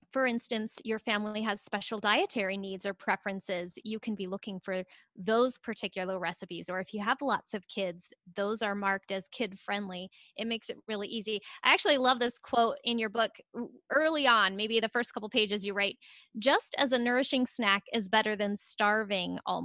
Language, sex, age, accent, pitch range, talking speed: English, female, 10-29, American, 200-255 Hz, 190 wpm